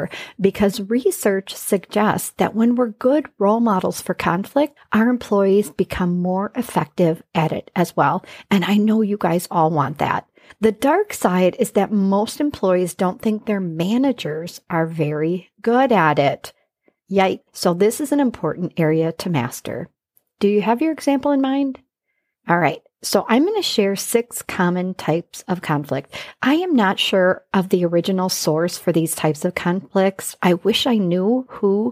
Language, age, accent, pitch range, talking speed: English, 40-59, American, 175-225 Hz, 165 wpm